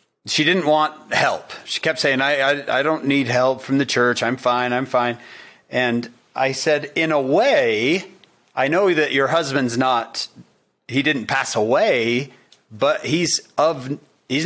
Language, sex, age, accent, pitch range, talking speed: English, male, 40-59, American, 120-155 Hz, 165 wpm